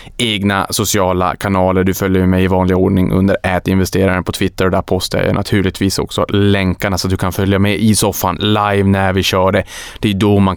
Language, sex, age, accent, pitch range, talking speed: Swedish, male, 20-39, Norwegian, 95-105 Hz, 210 wpm